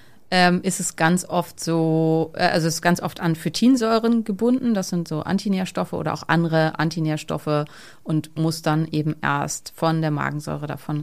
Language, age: German, 30-49